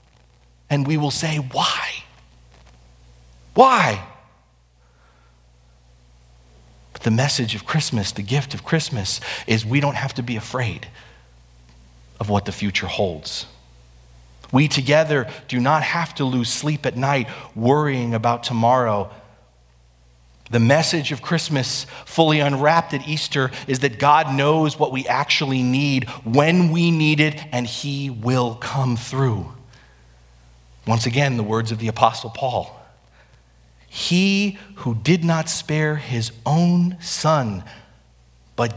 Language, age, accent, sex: English, 40-59, American, male